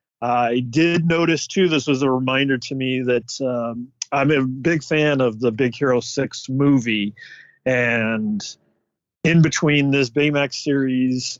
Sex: male